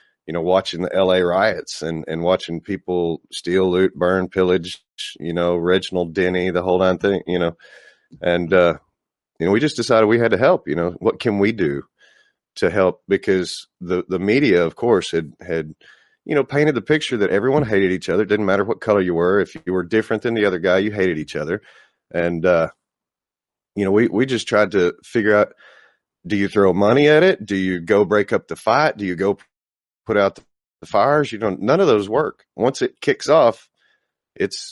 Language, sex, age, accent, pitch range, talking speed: English, male, 30-49, American, 85-105 Hz, 210 wpm